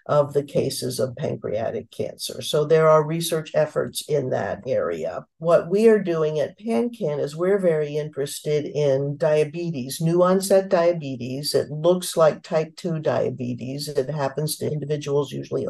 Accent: American